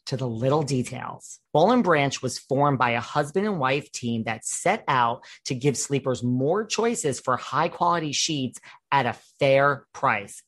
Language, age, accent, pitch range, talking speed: English, 40-59, American, 125-170 Hz, 170 wpm